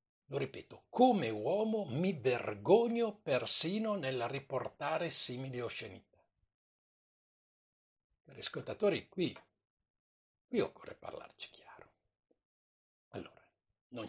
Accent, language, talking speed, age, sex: native, Italian, 85 wpm, 60-79, male